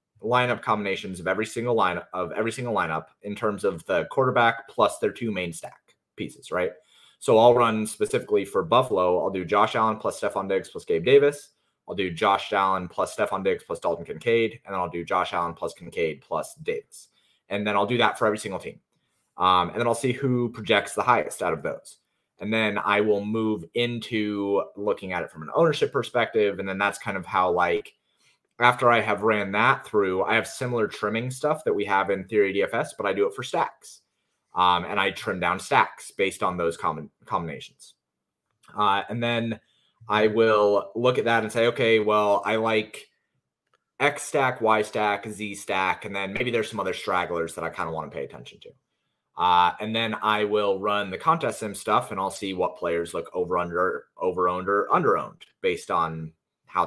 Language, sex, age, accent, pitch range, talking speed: English, male, 30-49, American, 95-120 Hz, 205 wpm